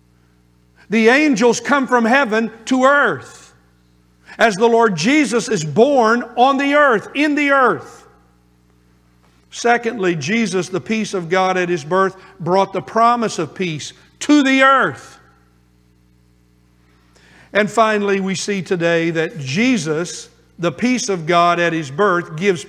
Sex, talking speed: male, 135 wpm